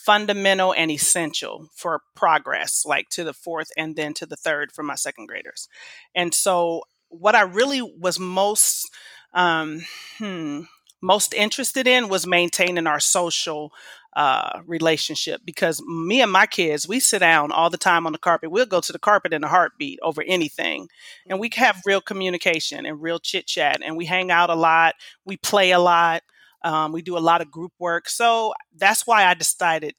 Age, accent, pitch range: 30-49, American, 165-205 Hz